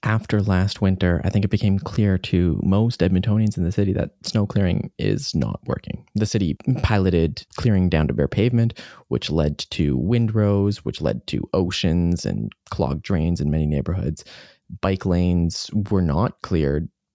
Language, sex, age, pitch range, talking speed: English, male, 20-39, 90-110 Hz, 165 wpm